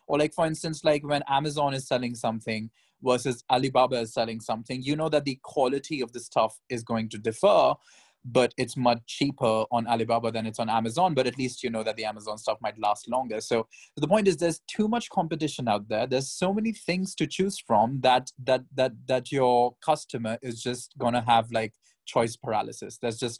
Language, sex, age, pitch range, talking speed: English, male, 20-39, 115-150 Hz, 210 wpm